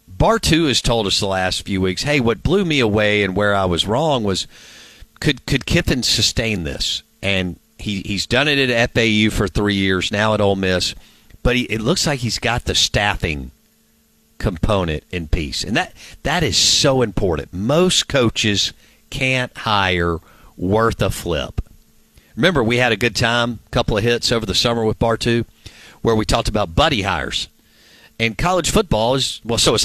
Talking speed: 185 wpm